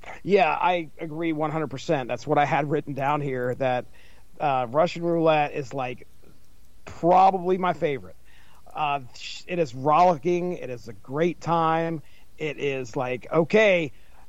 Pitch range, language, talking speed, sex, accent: 130-175 Hz, English, 140 wpm, male, American